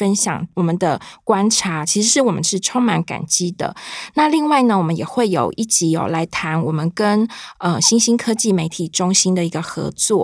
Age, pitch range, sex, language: 20-39, 175-225 Hz, female, Chinese